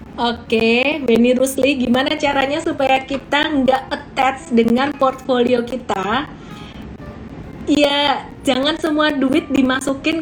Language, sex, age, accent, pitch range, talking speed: Indonesian, female, 20-39, native, 240-280 Hz, 105 wpm